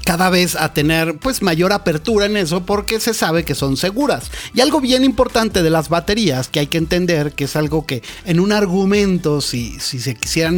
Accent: Mexican